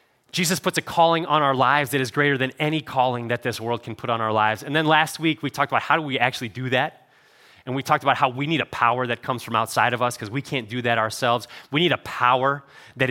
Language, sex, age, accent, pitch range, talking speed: English, male, 30-49, American, 120-155 Hz, 275 wpm